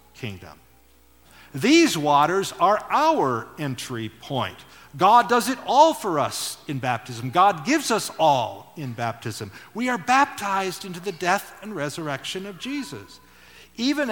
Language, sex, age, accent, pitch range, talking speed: English, male, 50-69, American, 115-180 Hz, 135 wpm